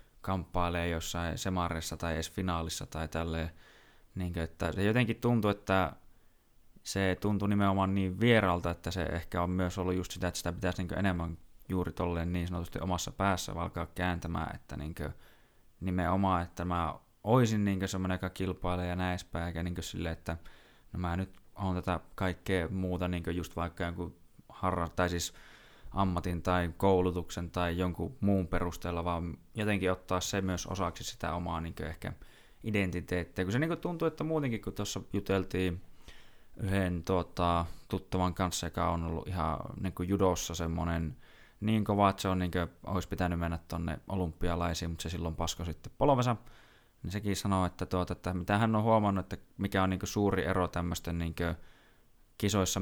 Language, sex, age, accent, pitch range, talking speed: Finnish, male, 20-39, native, 85-95 Hz, 160 wpm